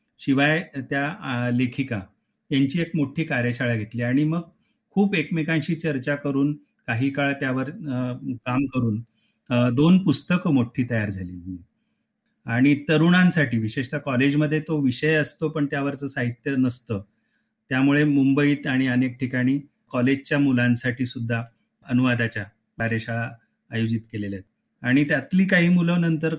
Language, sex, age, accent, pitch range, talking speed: Marathi, male, 30-49, native, 115-150 Hz, 90 wpm